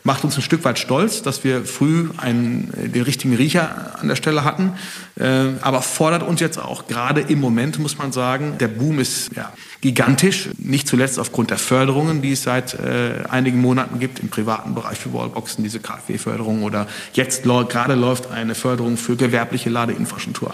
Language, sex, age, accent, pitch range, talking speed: German, male, 40-59, German, 120-145 Hz, 180 wpm